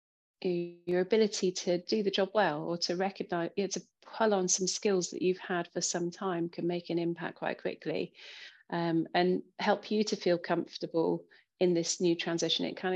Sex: female